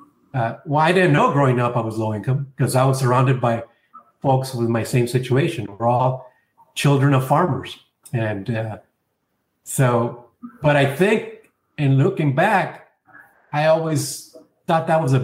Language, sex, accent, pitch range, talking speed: English, male, American, 125-155 Hz, 160 wpm